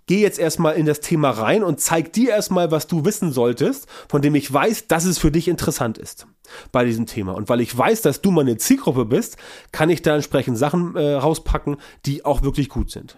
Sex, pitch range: male, 145-185 Hz